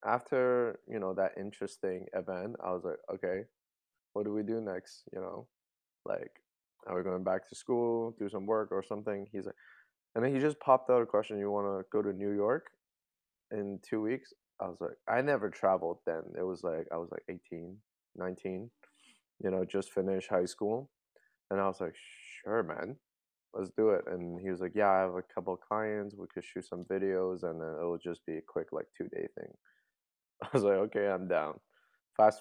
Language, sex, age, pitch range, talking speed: English, male, 20-39, 90-110 Hz, 210 wpm